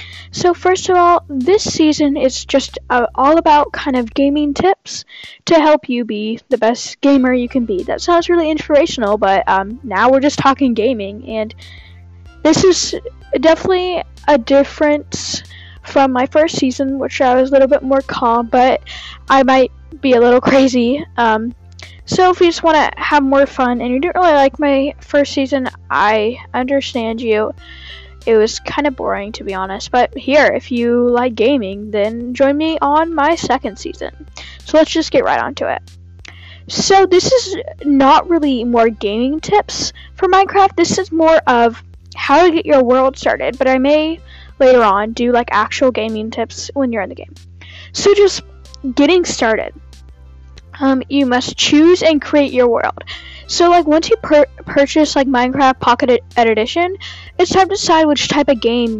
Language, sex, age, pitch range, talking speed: English, female, 10-29, 225-305 Hz, 175 wpm